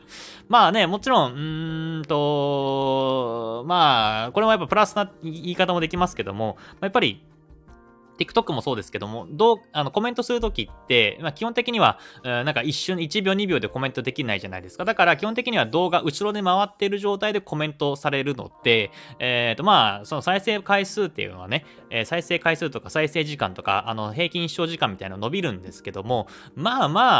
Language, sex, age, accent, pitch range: Japanese, male, 20-39, native, 115-175 Hz